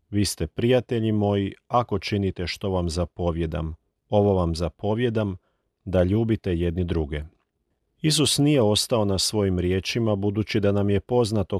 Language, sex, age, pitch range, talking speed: Croatian, male, 40-59, 90-110 Hz, 140 wpm